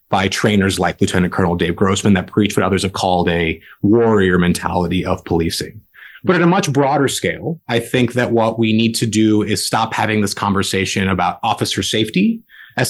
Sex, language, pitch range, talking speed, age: male, English, 105-135 Hz, 190 wpm, 30-49